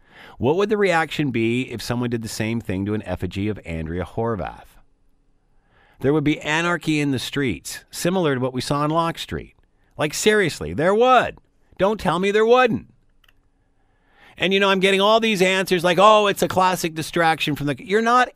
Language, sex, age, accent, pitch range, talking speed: English, male, 50-69, American, 130-190 Hz, 195 wpm